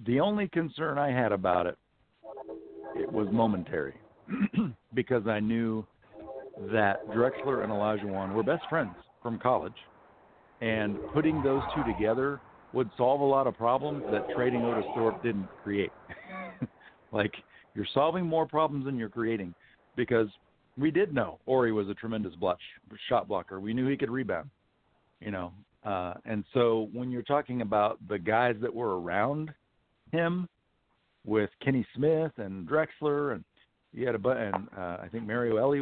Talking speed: 155 wpm